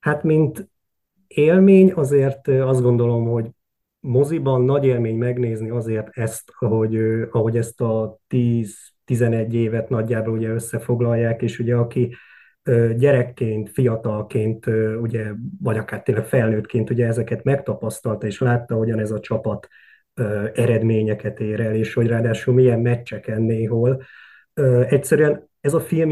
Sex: male